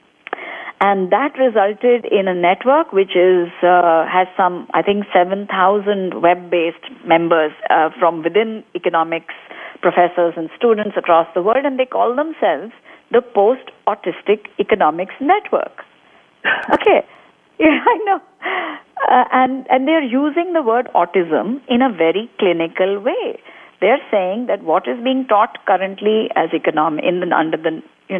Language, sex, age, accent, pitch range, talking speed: English, female, 50-69, Indian, 180-260 Hz, 140 wpm